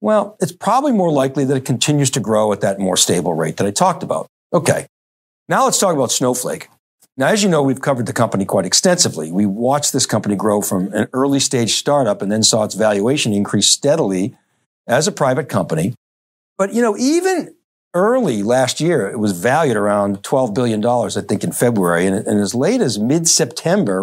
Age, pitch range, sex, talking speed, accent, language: 60-79, 105-145 Hz, male, 195 wpm, American, English